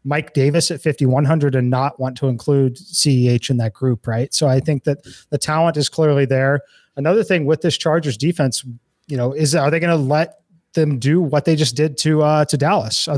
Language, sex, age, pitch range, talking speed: English, male, 30-49, 130-155 Hz, 220 wpm